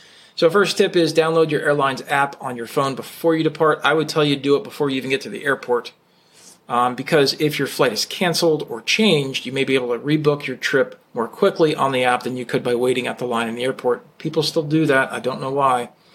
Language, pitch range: English, 125-155 Hz